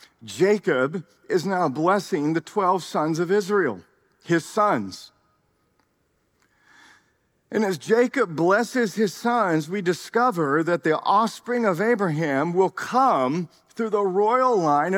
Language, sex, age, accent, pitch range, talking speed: English, male, 50-69, American, 170-235 Hz, 120 wpm